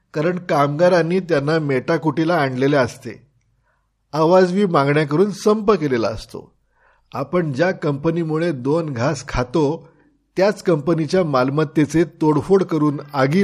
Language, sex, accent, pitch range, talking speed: Marathi, male, native, 135-175 Hz, 80 wpm